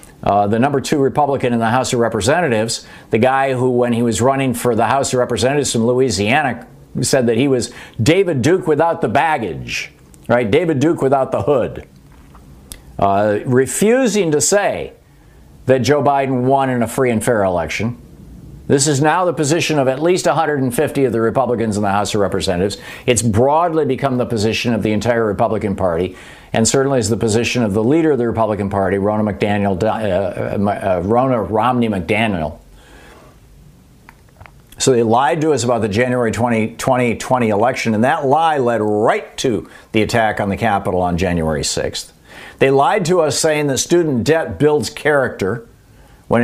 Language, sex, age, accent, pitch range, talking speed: English, male, 50-69, American, 110-135 Hz, 170 wpm